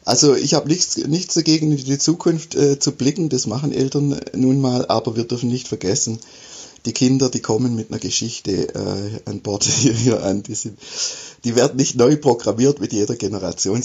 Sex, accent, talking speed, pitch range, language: male, German, 195 wpm, 110-140 Hz, German